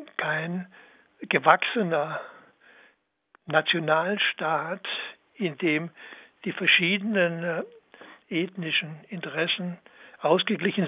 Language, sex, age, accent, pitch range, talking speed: German, male, 60-79, German, 160-195 Hz, 55 wpm